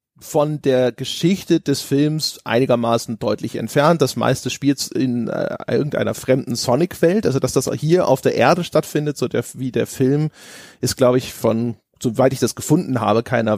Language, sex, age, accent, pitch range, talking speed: German, male, 30-49, German, 120-155 Hz, 170 wpm